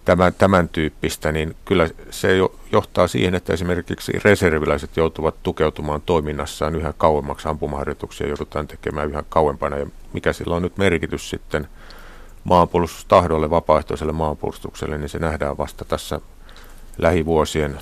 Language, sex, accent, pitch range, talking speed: Finnish, male, native, 75-85 Hz, 120 wpm